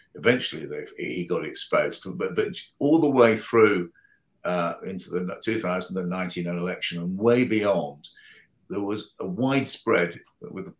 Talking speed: 135 wpm